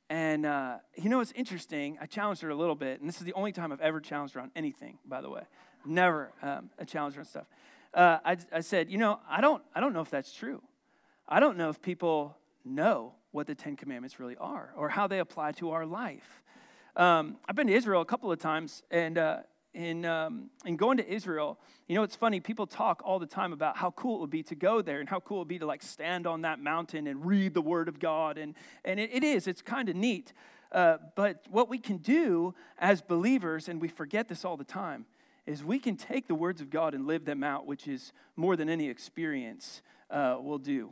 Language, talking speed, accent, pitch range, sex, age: English, 240 wpm, American, 160-215 Hz, male, 40-59